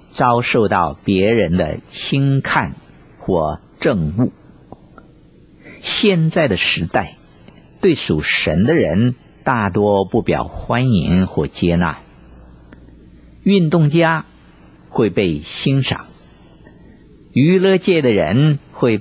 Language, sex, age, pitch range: Chinese, male, 50-69, 80-135 Hz